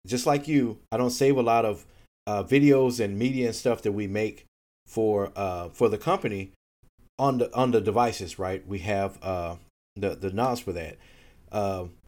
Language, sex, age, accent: English, male, 30-49, American